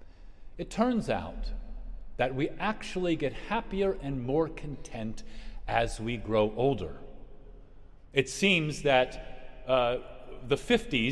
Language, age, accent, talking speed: English, 40-59, American, 110 wpm